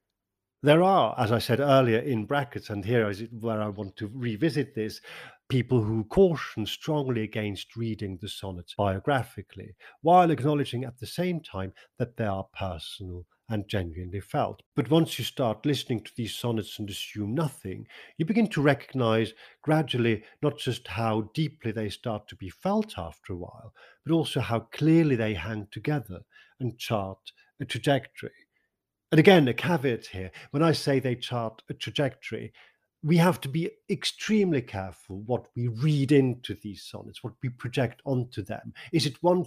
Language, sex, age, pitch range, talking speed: English, male, 50-69, 105-140 Hz, 165 wpm